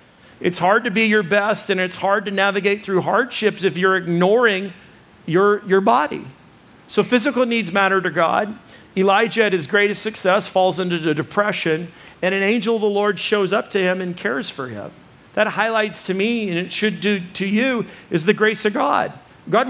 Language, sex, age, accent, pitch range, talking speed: English, male, 50-69, American, 170-205 Hz, 195 wpm